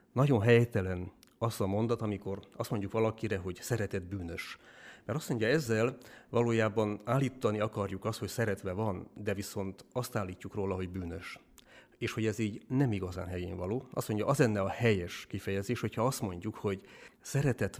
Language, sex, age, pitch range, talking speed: Hungarian, male, 40-59, 95-115 Hz, 170 wpm